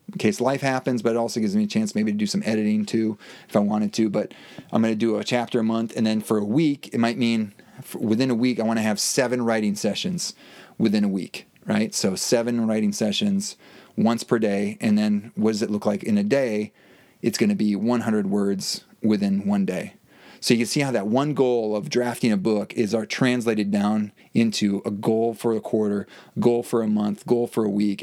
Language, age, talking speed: English, 30-49, 230 wpm